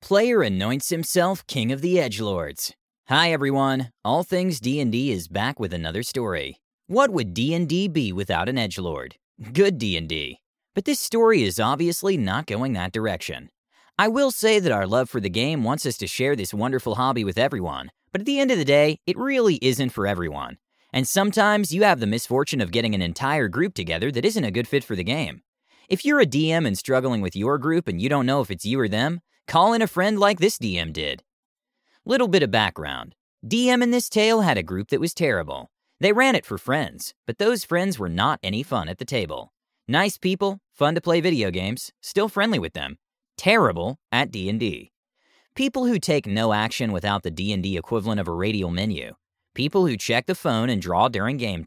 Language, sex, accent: English, male, American